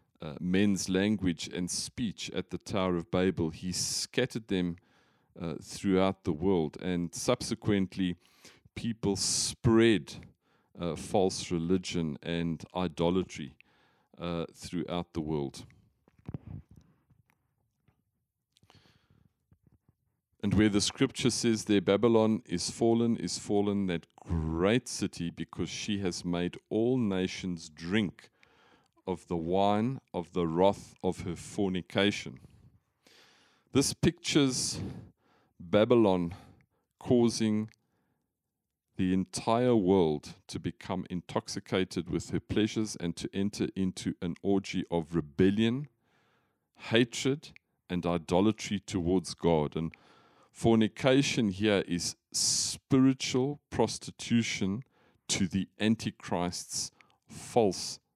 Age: 40-59